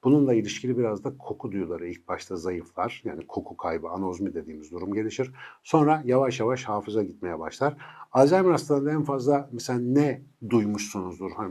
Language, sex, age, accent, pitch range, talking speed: Turkish, male, 60-79, native, 100-140 Hz, 155 wpm